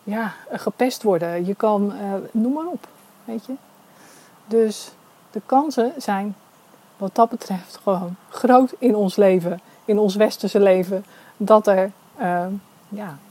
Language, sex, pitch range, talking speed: Dutch, female, 180-235 Hz, 140 wpm